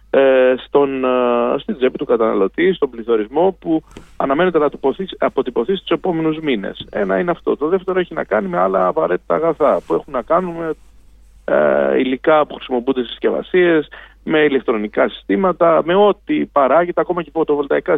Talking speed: 155 wpm